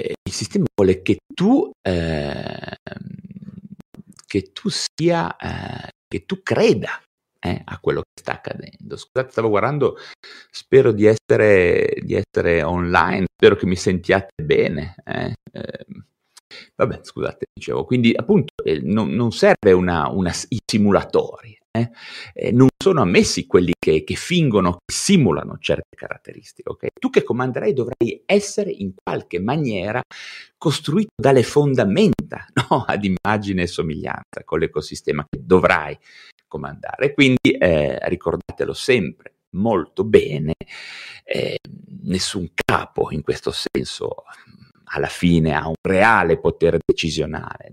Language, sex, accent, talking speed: Italian, male, native, 120 wpm